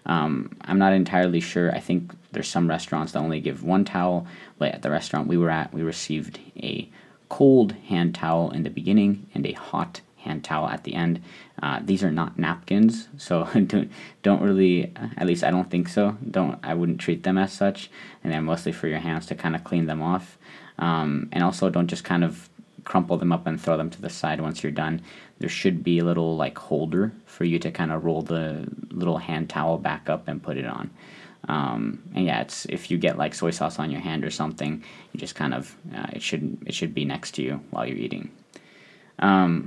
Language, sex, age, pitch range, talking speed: English, male, 20-39, 80-95 Hz, 220 wpm